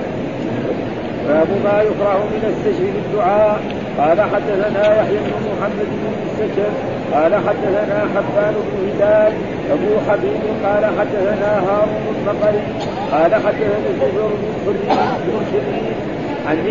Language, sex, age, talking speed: Arabic, male, 50-69, 120 wpm